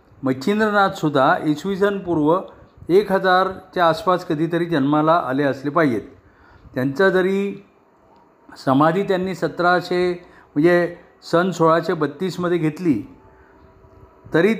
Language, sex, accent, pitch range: Marathi, male, native, 150-190 Hz